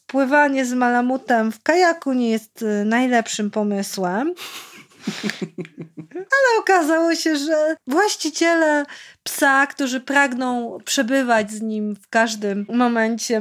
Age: 30-49